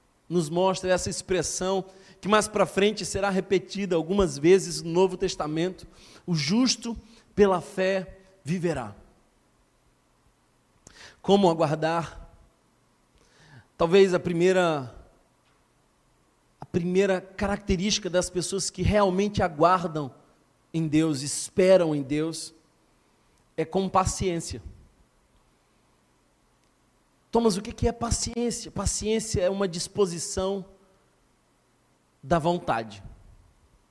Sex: male